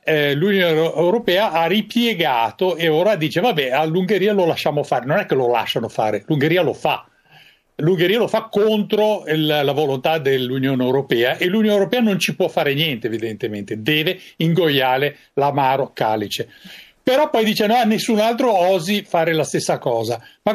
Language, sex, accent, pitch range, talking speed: Italian, male, native, 140-180 Hz, 165 wpm